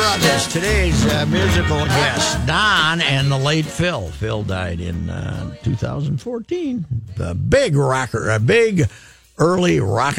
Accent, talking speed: American, 130 wpm